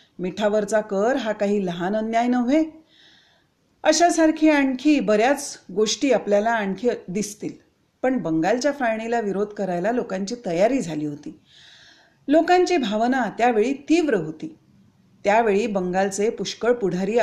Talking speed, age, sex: 80 wpm, 40-59, female